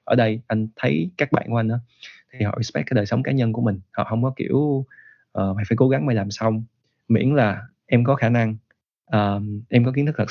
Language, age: Vietnamese, 20-39